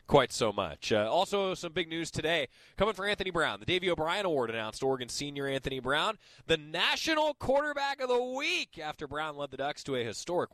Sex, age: male, 20-39